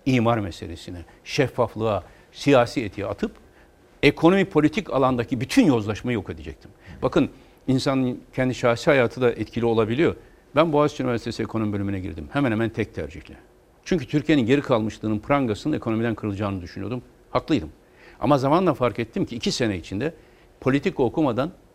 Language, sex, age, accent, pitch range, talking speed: Turkish, male, 60-79, native, 110-155 Hz, 140 wpm